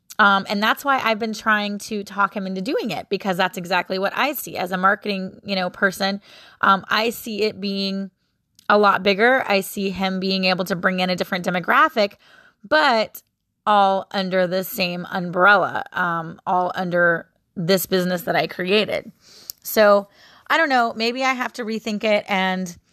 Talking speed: 180 wpm